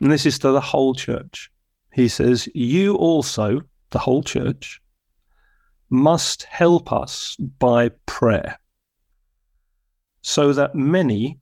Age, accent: 40-59, British